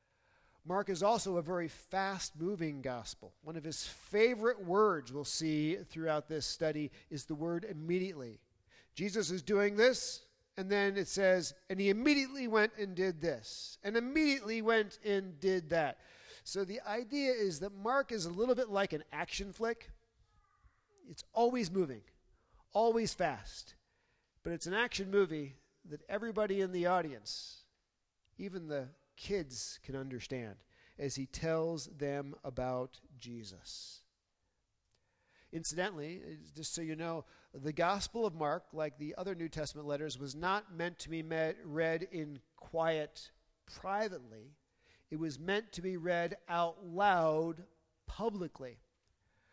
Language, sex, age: English, male, 40-59